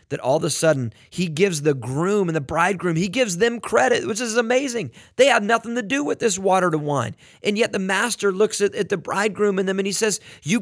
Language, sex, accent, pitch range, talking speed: English, male, American, 175-215 Hz, 250 wpm